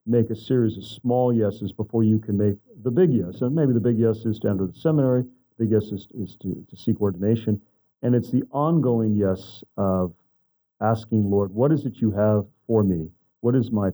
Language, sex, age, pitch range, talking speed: English, male, 40-59, 105-125 Hz, 215 wpm